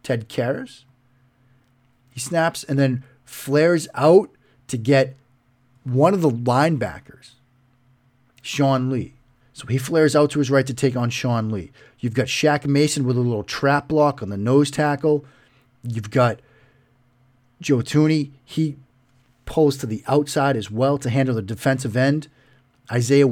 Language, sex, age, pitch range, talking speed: English, male, 40-59, 125-145 Hz, 150 wpm